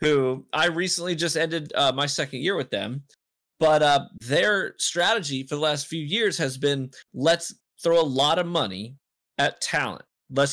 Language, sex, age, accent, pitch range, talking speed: English, male, 20-39, American, 125-160 Hz, 175 wpm